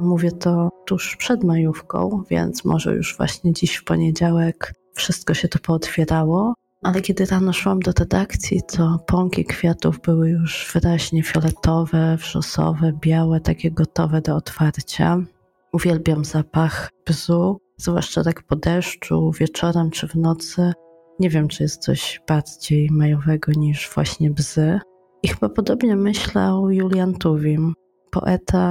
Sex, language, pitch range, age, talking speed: female, Polish, 160-180 Hz, 20-39, 130 wpm